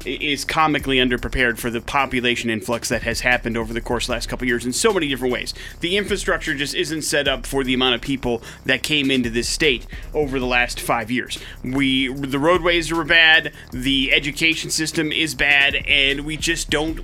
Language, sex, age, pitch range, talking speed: English, male, 30-49, 130-165 Hz, 210 wpm